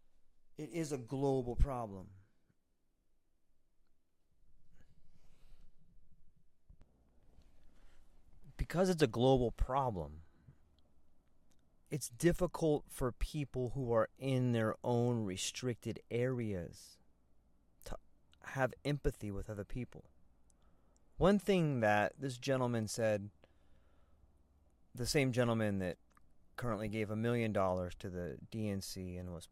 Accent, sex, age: American, male, 30-49